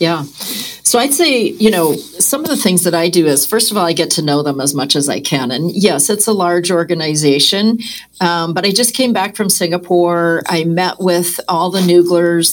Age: 40-59